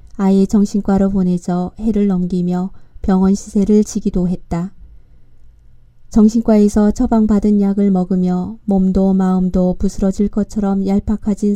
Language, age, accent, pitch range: Korean, 20-39, native, 185-205 Hz